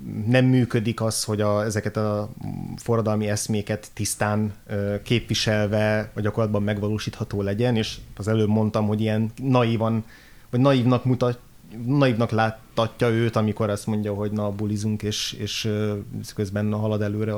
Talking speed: 140 wpm